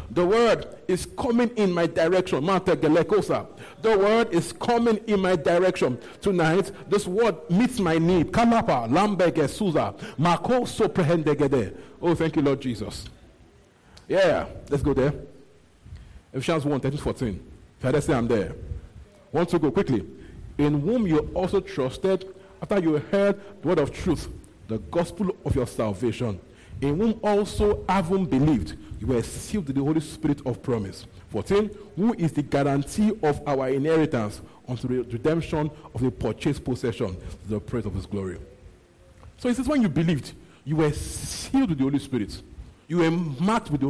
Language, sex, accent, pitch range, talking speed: English, male, Nigerian, 125-195 Hz, 150 wpm